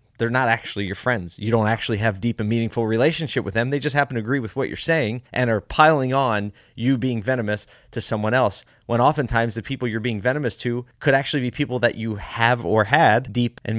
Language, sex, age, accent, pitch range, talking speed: English, male, 30-49, American, 100-125 Hz, 230 wpm